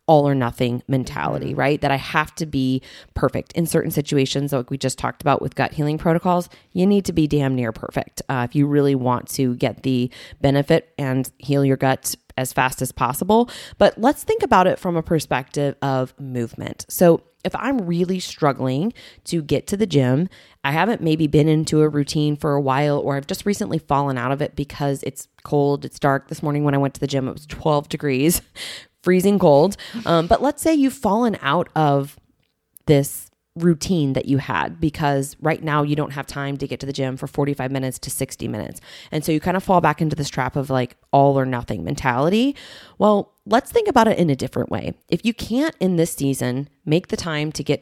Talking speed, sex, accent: 215 wpm, female, American